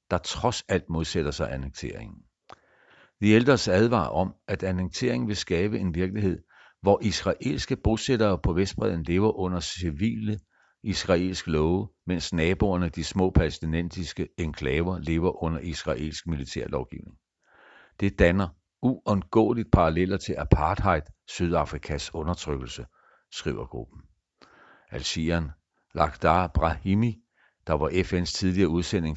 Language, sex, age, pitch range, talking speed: Danish, male, 60-79, 80-100 Hz, 110 wpm